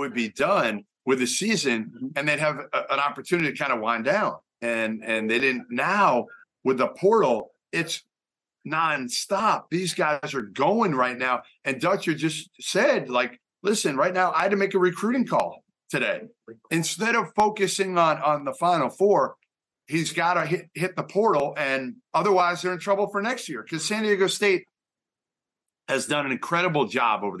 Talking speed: 175 wpm